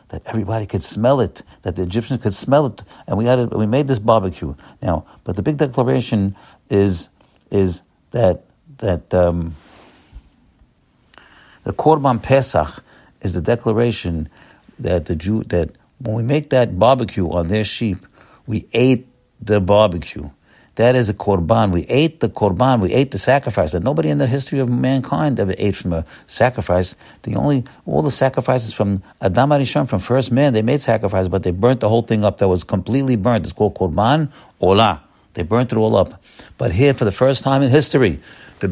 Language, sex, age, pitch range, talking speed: English, male, 60-79, 95-135 Hz, 185 wpm